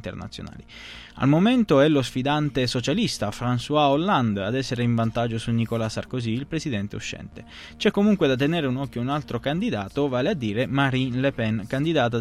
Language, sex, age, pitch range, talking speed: Italian, male, 20-39, 110-135 Hz, 170 wpm